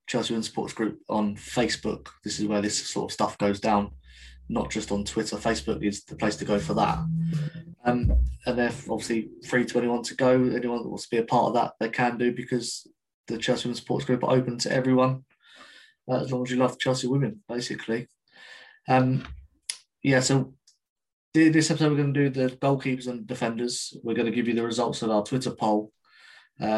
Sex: male